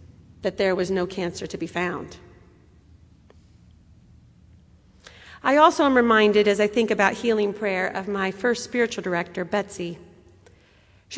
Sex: female